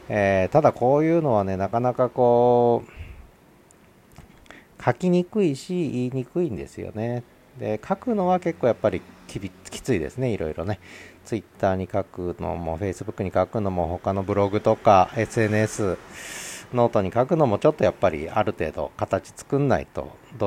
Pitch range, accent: 90-120 Hz, native